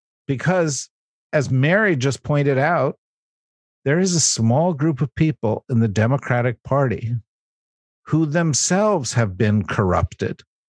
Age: 50-69